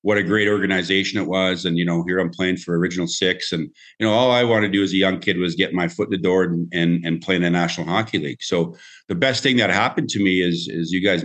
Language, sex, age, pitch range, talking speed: English, male, 50-69, 85-100 Hz, 295 wpm